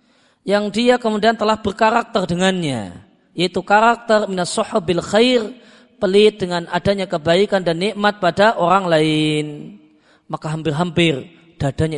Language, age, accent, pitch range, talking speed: Indonesian, 30-49, native, 165-215 Hz, 110 wpm